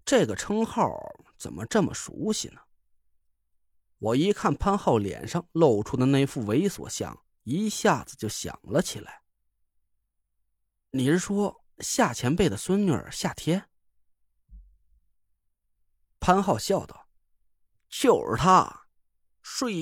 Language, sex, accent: Chinese, male, native